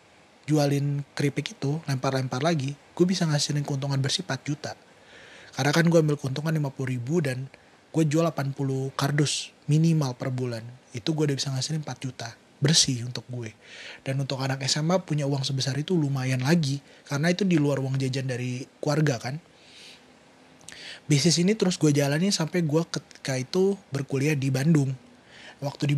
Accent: native